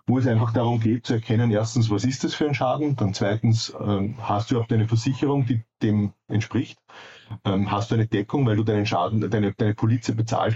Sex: male